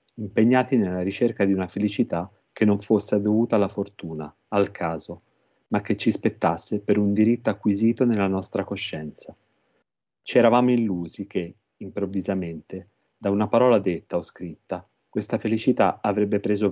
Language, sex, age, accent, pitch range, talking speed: Italian, male, 30-49, native, 95-110 Hz, 145 wpm